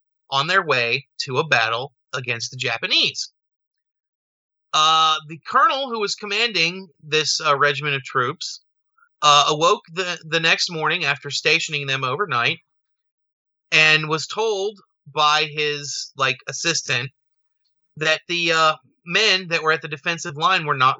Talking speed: 140 wpm